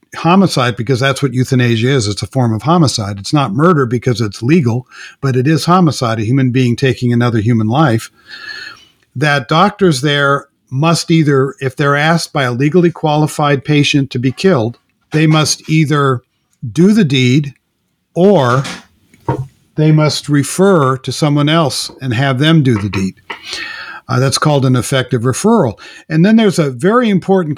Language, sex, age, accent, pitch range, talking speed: English, male, 50-69, American, 125-160 Hz, 165 wpm